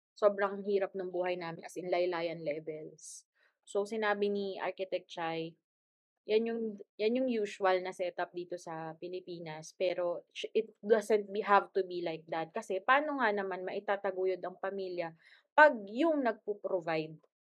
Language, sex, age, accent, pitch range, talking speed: Filipino, female, 20-39, native, 180-265 Hz, 150 wpm